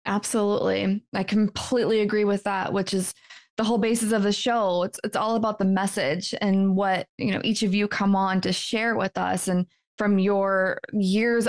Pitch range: 200-240 Hz